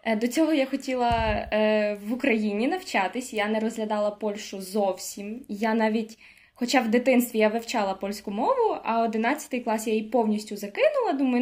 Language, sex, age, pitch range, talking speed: Ukrainian, female, 20-39, 220-280 Hz, 150 wpm